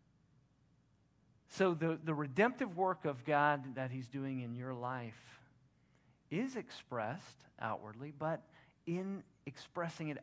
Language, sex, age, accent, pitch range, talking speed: English, male, 40-59, American, 120-155 Hz, 115 wpm